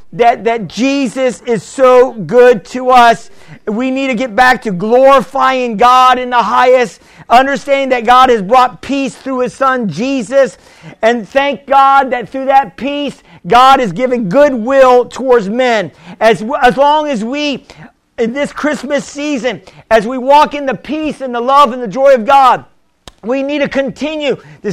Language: English